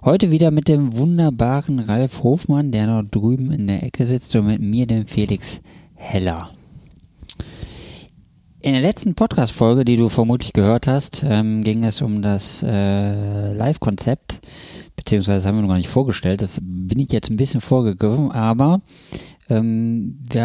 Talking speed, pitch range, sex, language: 160 wpm, 100-125 Hz, male, German